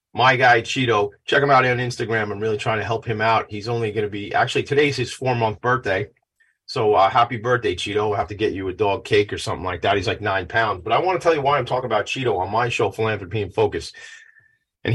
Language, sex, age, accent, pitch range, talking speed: English, male, 30-49, American, 110-145 Hz, 255 wpm